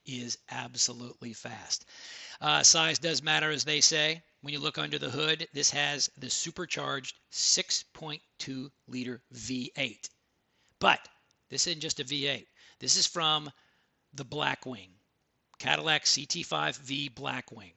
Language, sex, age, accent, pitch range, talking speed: English, male, 40-59, American, 130-170 Hz, 125 wpm